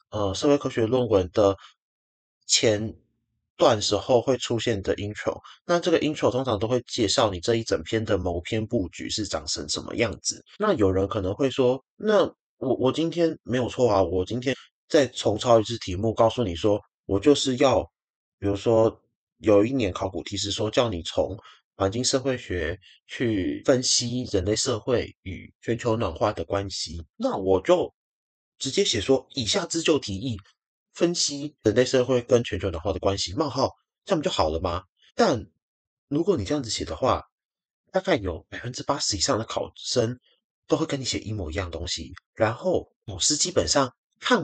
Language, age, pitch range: Chinese, 20-39, 100-135 Hz